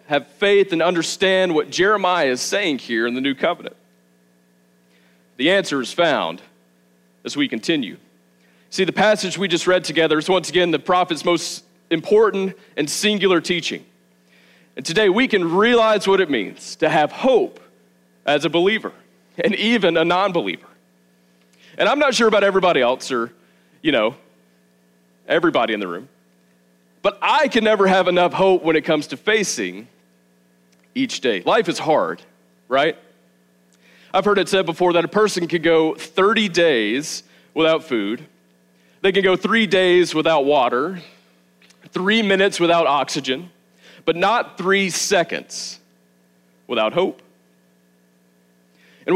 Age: 40-59